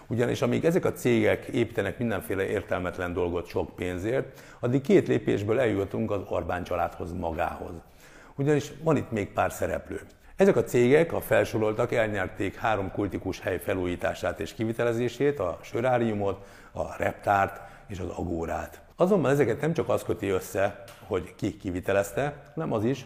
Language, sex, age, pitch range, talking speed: Hungarian, male, 50-69, 95-125 Hz, 150 wpm